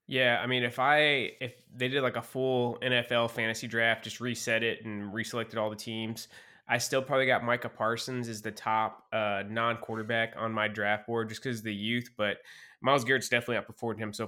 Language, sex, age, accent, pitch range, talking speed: English, male, 20-39, American, 110-125 Hz, 200 wpm